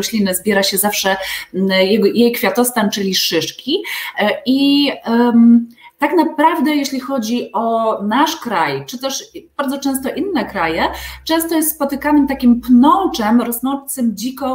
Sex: female